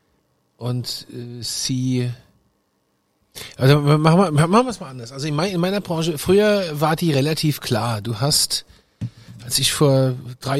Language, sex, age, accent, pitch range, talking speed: German, male, 40-59, German, 110-140 Hz, 140 wpm